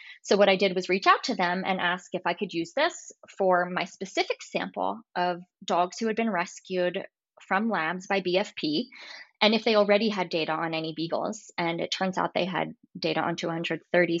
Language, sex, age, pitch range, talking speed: English, female, 20-39, 180-240 Hz, 205 wpm